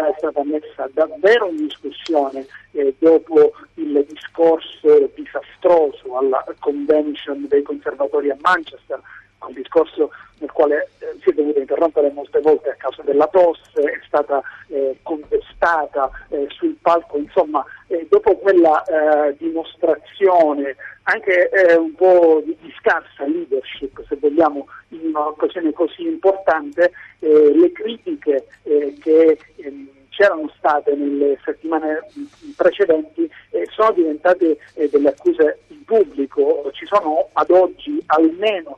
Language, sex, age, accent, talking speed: Italian, male, 50-69, native, 125 wpm